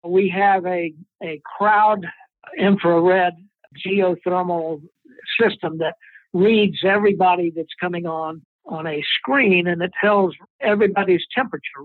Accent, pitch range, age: American, 165-200 Hz, 60-79